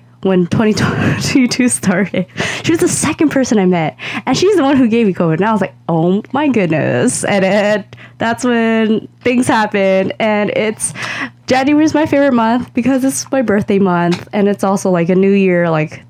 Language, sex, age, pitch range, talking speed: English, female, 20-39, 170-230 Hz, 190 wpm